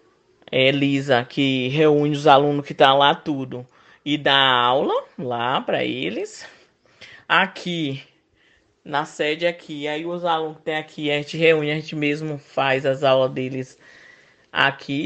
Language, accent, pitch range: Portuguese, Brazilian, 140-195 Hz